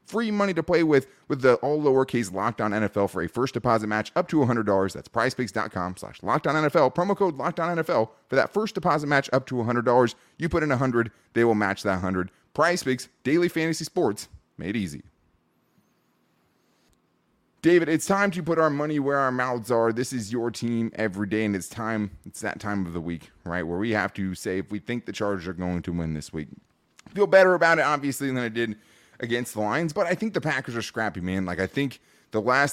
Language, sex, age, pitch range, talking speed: English, male, 20-39, 105-140 Hz, 235 wpm